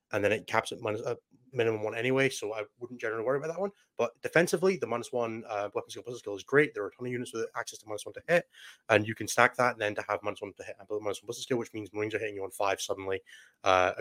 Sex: male